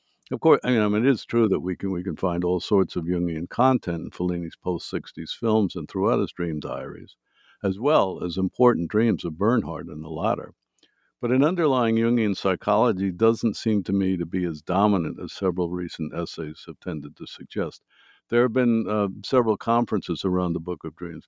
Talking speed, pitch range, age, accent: 200 wpm, 90-110 Hz, 60-79, American